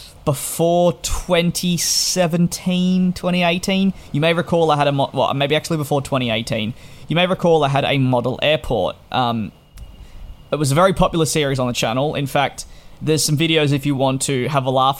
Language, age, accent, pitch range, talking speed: English, 20-39, Australian, 125-155 Hz, 175 wpm